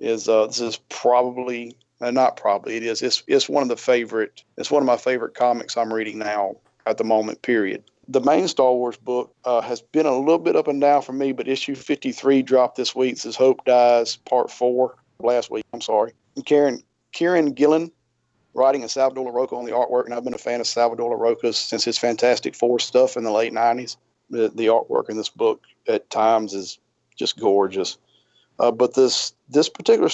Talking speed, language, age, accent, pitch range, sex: 210 wpm, English, 40-59, American, 115-130 Hz, male